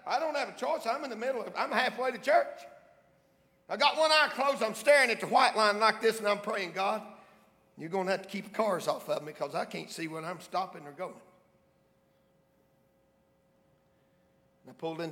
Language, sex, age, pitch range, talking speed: English, male, 50-69, 160-235 Hz, 205 wpm